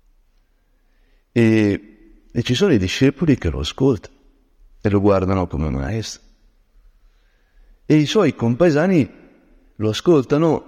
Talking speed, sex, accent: 120 wpm, male, native